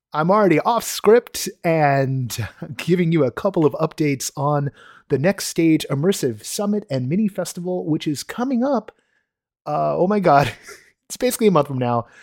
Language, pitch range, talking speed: English, 120-170 Hz, 165 wpm